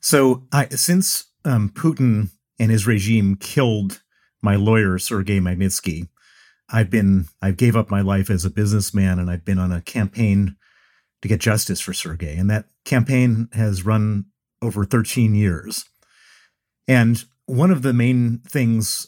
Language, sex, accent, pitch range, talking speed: English, male, American, 100-120 Hz, 155 wpm